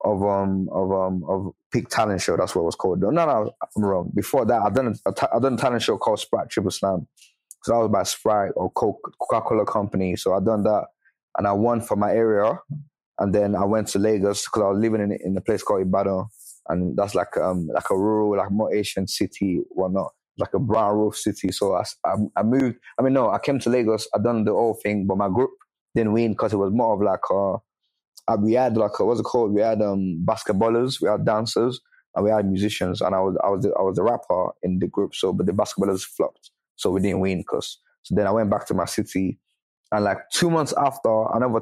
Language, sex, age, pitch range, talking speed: English, male, 20-39, 95-110 Hz, 245 wpm